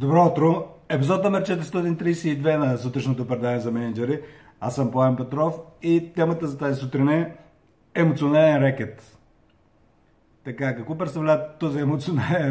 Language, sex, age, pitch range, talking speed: Bulgarian, male, 50-69, 120-155 Hz, 130 wpm